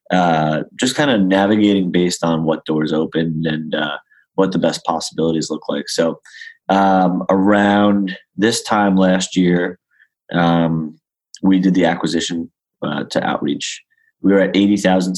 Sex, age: male, 20-39